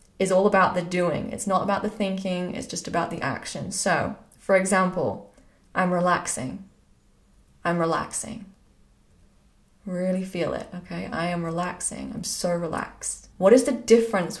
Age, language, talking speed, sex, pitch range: 20-39, English, 150 wpm, female, 180-225 Hz